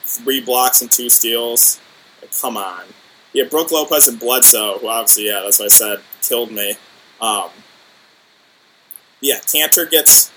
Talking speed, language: 145 wpm, English